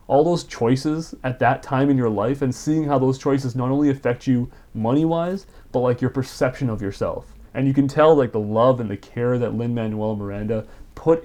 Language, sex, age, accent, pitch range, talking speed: English, male, 30-49, American, 115-140 Hz, 215 wpm